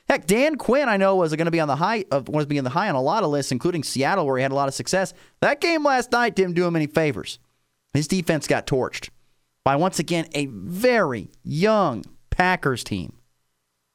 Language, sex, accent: English, male, American